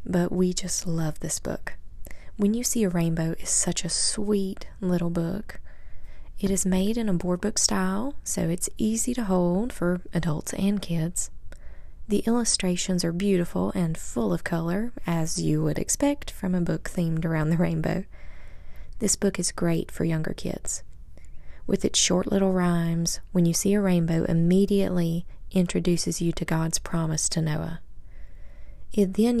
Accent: American